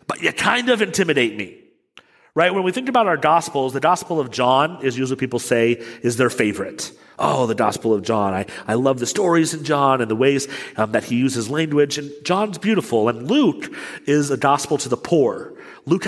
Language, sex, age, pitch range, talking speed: English, male, 40-59, 120-180 Hz, 215 wpm